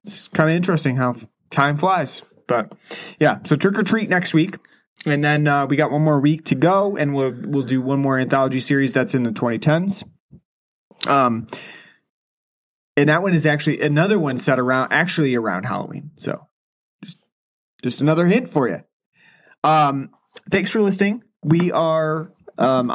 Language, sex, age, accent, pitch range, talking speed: English, male, 30-49, American, 125-170 Hz, 165 wpm